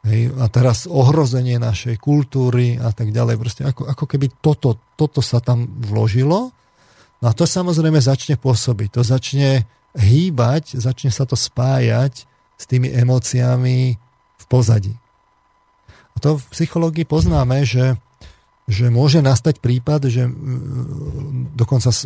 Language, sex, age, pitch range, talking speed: Slovak, male, 40-59, 120-140 Hz, 125 wpm